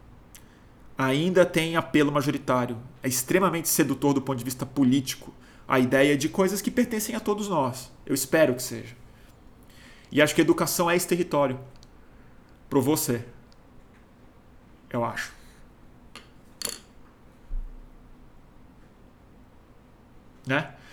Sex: male